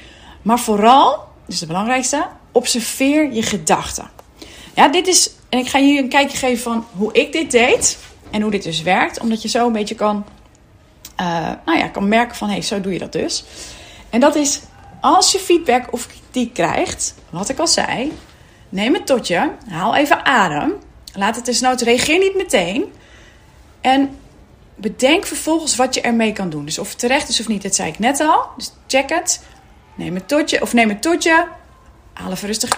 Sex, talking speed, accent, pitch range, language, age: female, 195 wpm, Dutch, 215-295 Hz, Dutch, 30-49